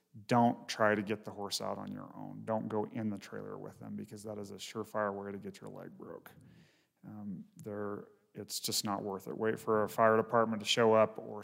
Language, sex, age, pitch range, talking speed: English, male, 30-49, 105-115 Hz, 225 wpm